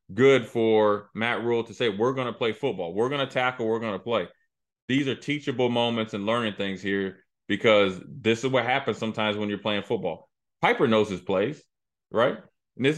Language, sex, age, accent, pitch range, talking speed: English, male, 30-49, American, 105-125 Hz, 205 wpm